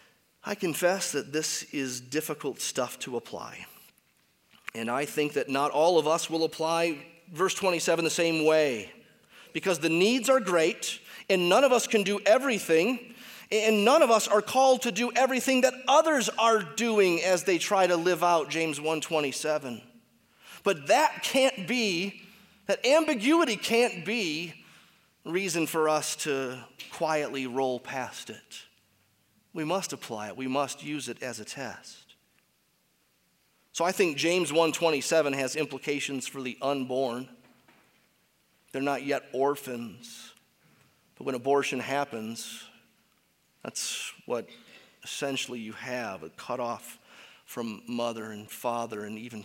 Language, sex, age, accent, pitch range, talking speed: English, male, 30-49, American, 135-195 Hz, 140 wpm